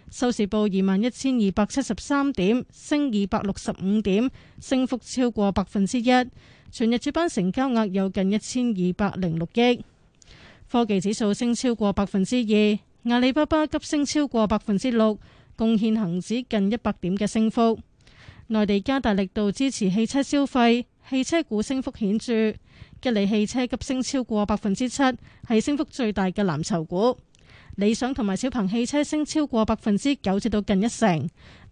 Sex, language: female, Chinese